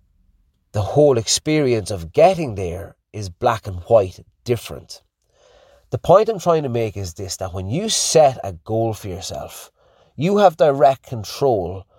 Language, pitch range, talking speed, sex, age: English, 100-135 Hz, 155 wpm, male, 30-49